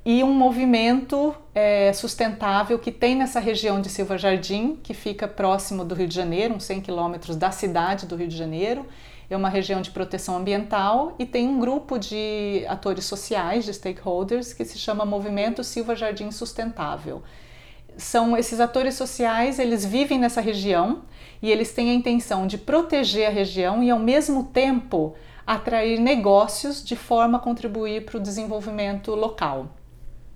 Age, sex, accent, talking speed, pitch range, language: 40-59, female, Brazilian, 160 wpm, 190-240 Hz, Portuguese